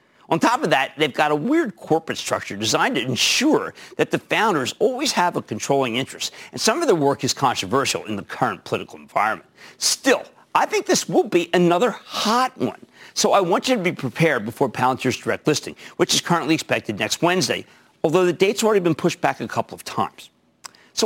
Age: 50-69